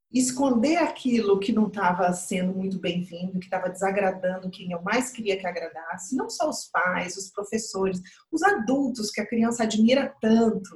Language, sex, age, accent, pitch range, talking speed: Portuguese, female, 40-59, Brazilian, 190-250 Hz, 165 wpm